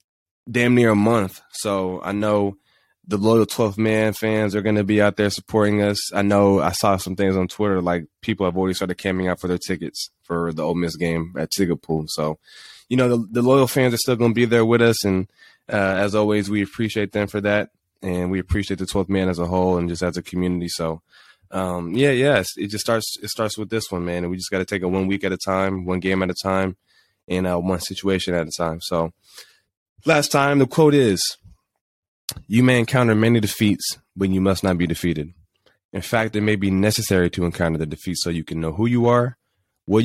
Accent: American